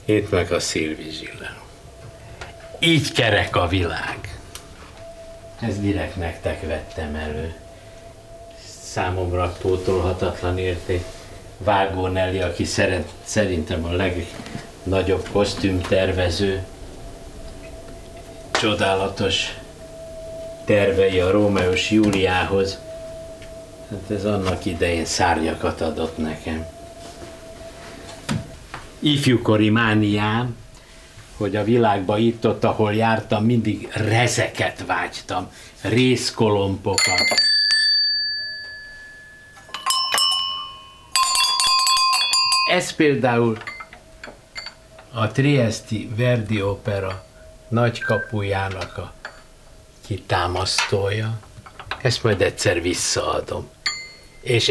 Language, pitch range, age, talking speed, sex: Hungarian, 95-125 Hz, 60-79, 65 wpm, male